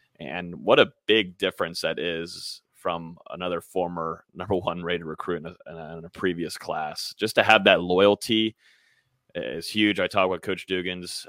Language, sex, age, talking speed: English, male, 30-49, 165 wpm